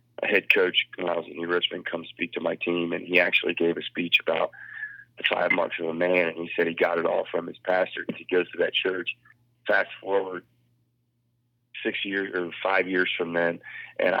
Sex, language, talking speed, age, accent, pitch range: male, English, 220 wpm, 30-49, American, 85-120 Hz